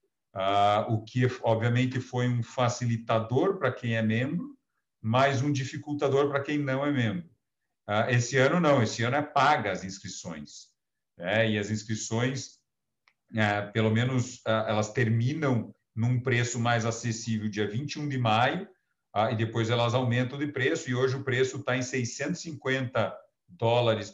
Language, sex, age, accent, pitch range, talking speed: Portuguese, male, 50-69, Brazilian, 110-135 Hz, 155 wpm